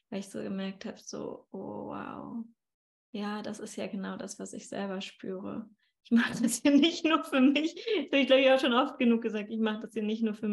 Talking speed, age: 245 wpm, 20-39